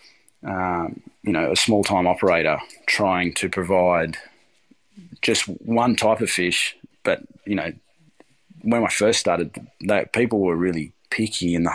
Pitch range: 85-110 Hz